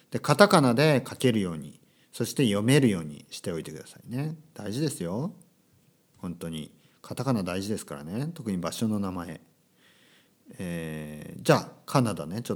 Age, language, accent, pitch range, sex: 40-59, Japanese, native, 90-145 Hz, male